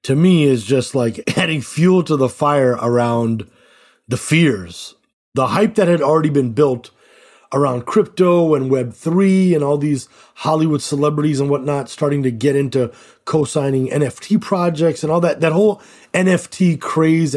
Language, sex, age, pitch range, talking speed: English, male, 30-49, 120-160 Hz, 155 wpm